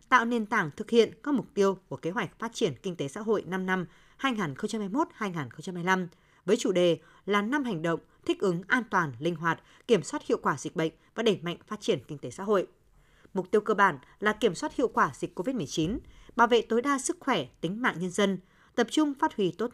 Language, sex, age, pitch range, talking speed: Vietnamese, female, 20-39, 180-240 Hz, 225 wpm